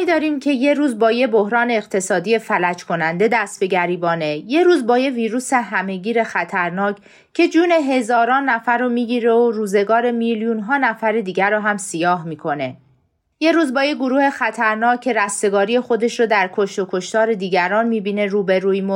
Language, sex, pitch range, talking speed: Persian, female, 195-245 Hz, 170 wpm